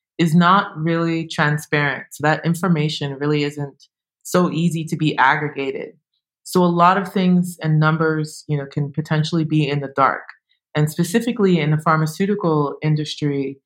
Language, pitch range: English, 145-165 Hz